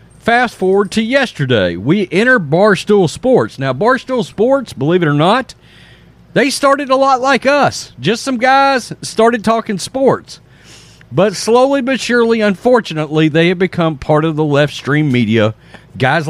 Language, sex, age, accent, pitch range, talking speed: English, male, 40-59, American, 135-195 Hz, 155 wpm